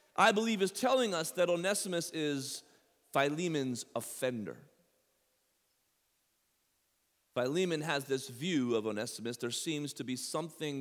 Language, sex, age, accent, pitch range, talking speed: English, male, 40-59, American, 110-145 Hz, 115 wpm